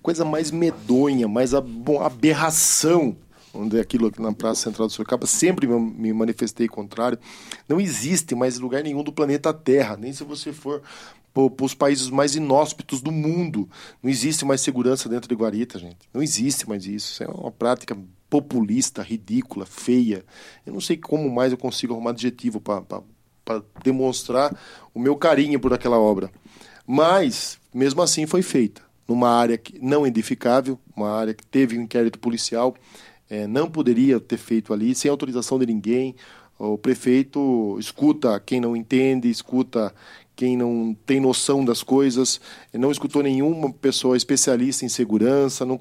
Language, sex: Portuguese, male